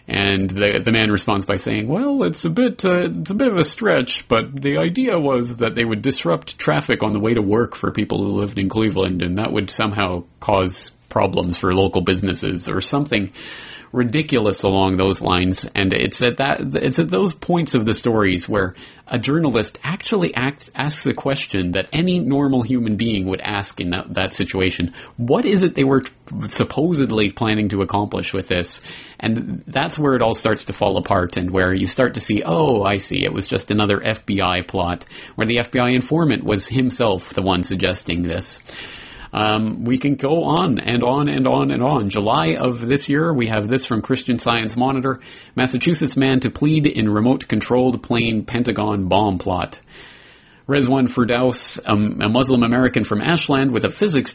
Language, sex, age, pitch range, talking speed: English, male, 30-49, 100-130 Hz, 190 wpm